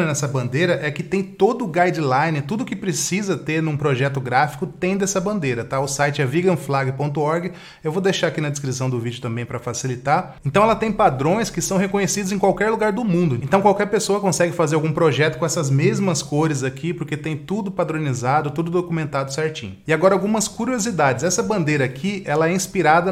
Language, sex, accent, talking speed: English, male, Brazilian, 195 wpm